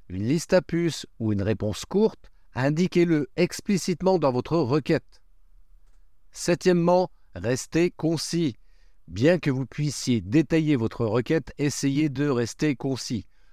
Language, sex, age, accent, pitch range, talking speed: French, male, 50-69, French, 115-165 Hz, 120 wpm